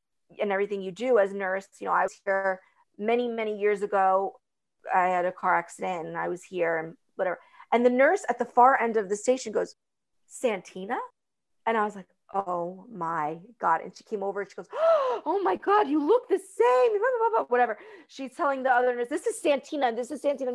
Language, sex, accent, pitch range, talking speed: English, female, American, 205-305 Hz, 205 wpm